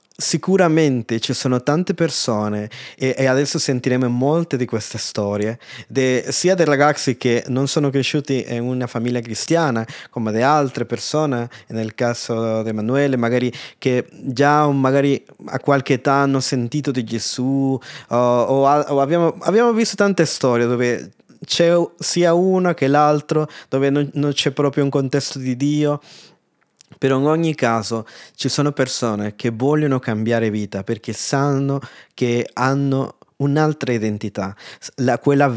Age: 20-39